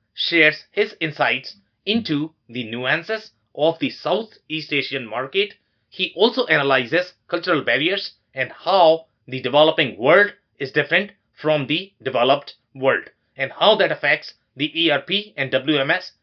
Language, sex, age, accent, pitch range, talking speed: English, male, 30-49, Indian, 145-200 Hz, 130 wpm